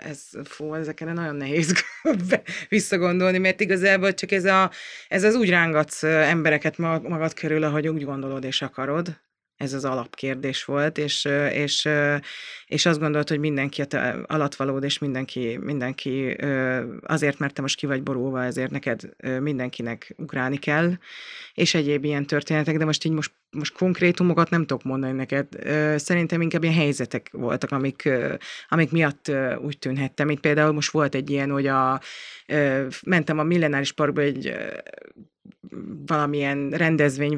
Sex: female